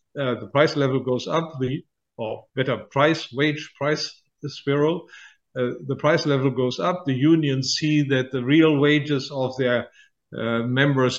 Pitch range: 125-145 Hz